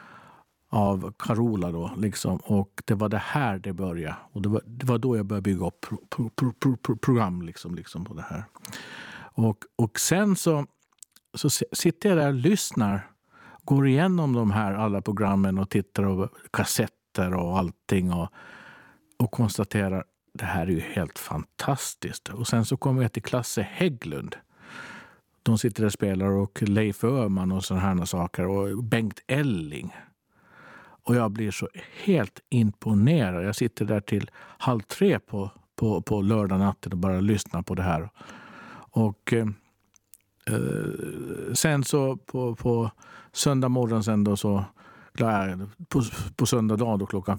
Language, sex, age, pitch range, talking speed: Swedish, male, 50-69, 95-120 Hz, 160 wpm